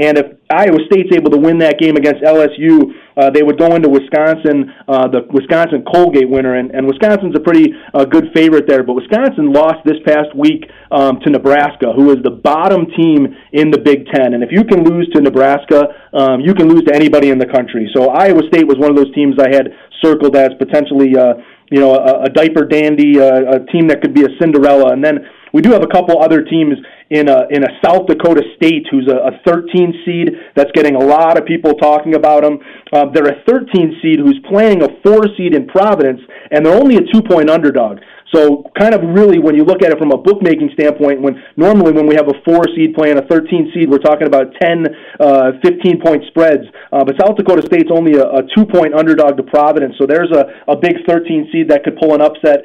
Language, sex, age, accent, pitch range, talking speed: English, male, 30-49, American, 140-170 Hz, 215 wpm